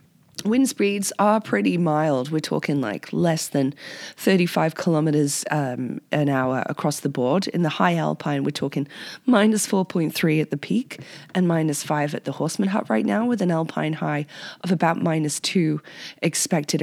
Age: 20-39